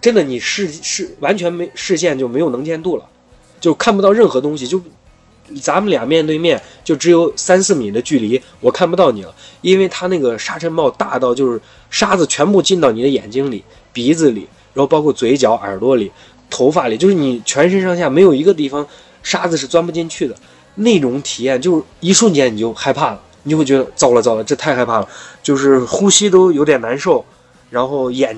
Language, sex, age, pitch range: Chinese, male, 20-39, 125-170 Hz